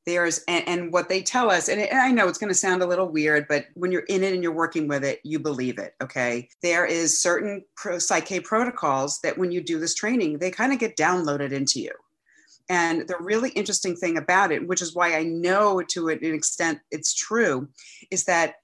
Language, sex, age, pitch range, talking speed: English, female, 40-59, 155-195 Hz, 225 wpm